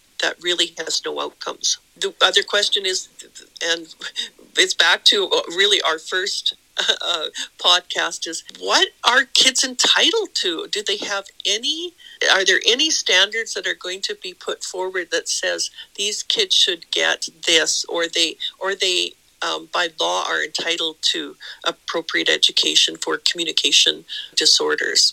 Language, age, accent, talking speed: English, 50-69, American, 145 wpm